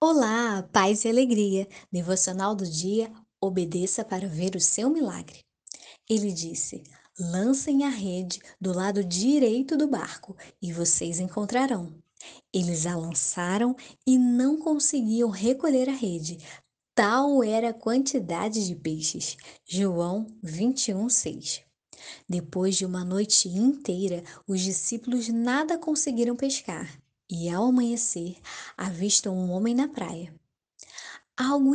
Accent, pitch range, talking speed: Brazilian, 185-250 Hz, 115 wpm